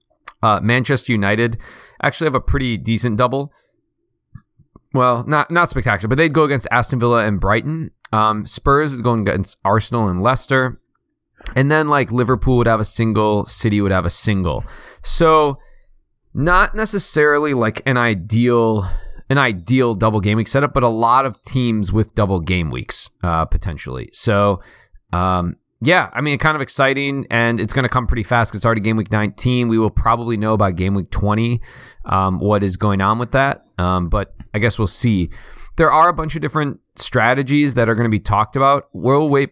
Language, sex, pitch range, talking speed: English, male, 105-130 Hz, 185 wpm